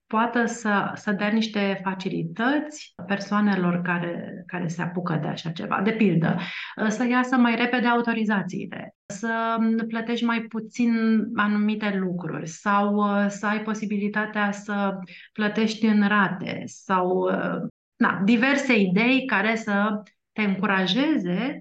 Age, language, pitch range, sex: 30-49, Romanian, 180-220 Hz, female